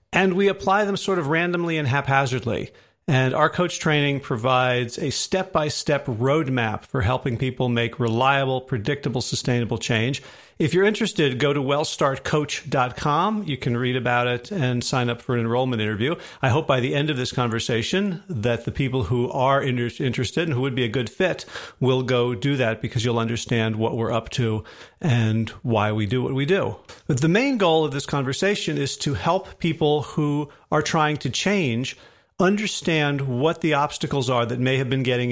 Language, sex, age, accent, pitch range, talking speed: English, male, 40-59, American, 125-155 Hz, 185 wpm